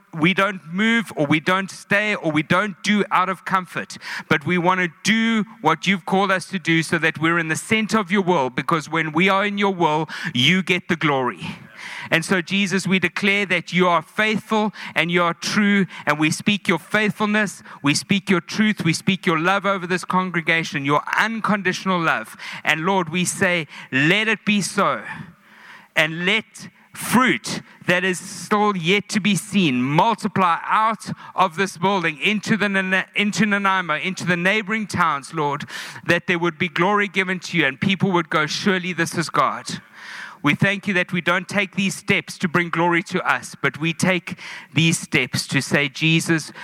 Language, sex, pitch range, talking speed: English, male, 160-195 Hz, 190 wpm